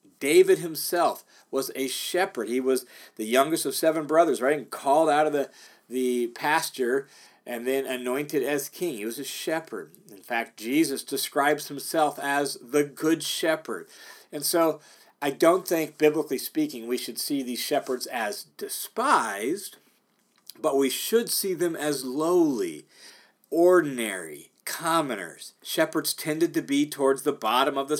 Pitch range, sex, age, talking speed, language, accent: 130-165 Hz, male, 40-59, 150 wpm, English, American